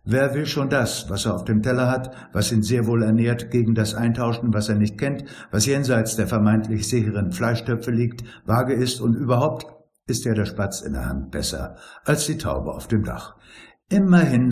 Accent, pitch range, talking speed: German, 110-130 Hz, 200 wpm